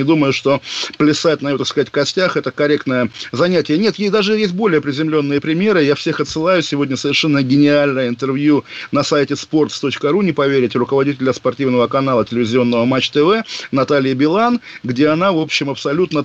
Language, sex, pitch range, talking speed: Russian, male, 135-170 Hz, 165 wpm